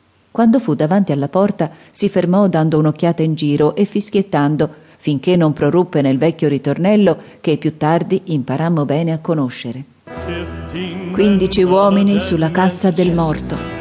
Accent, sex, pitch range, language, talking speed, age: native, female, 140-185 Hz, Italian, 140 wpm, 40-59